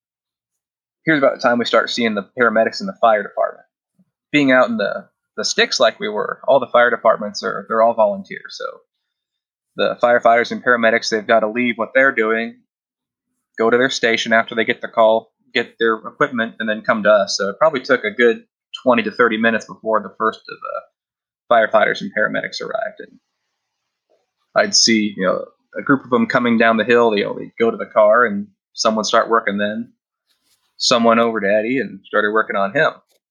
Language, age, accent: English, 20-39, American